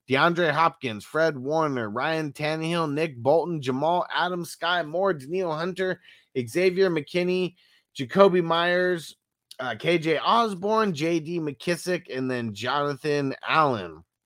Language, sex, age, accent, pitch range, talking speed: English, male, 30-49, American, 125-165 Hz, 115 wpm